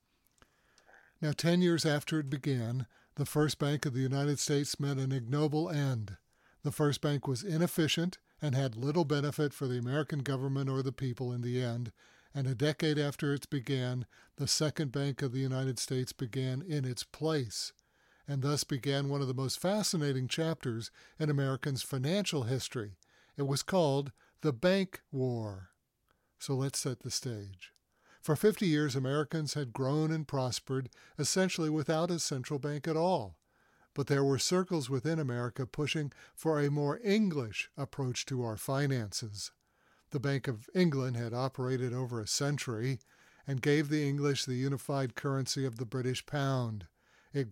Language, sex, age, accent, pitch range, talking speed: English, male, 60-79, American, 130-150 Hz, 160 wpm